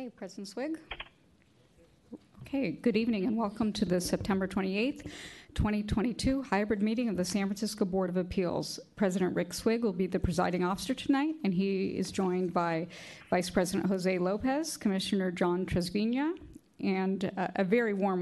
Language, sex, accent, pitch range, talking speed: English, female, American, 190-225 Hz, 160 wpm